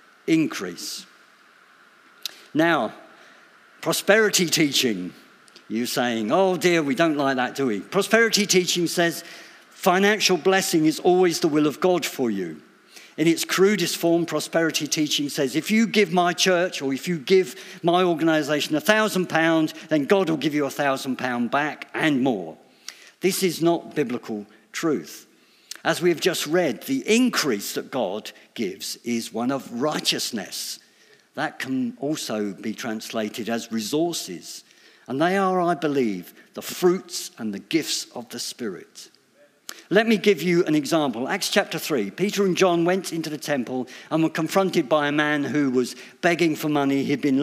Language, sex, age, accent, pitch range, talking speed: English, male, 50-69, British, 140-185 Hz, 160 wpm